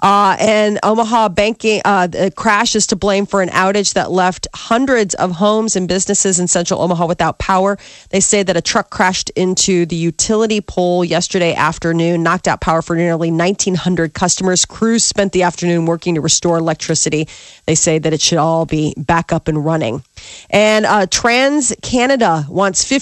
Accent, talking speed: American, 175 wpm